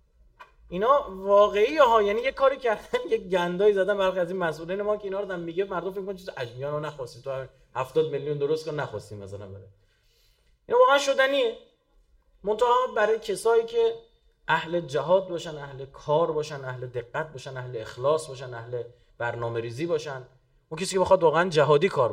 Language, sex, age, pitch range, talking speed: Persian, male, 30-49, 135-190 Hz, 170 wpm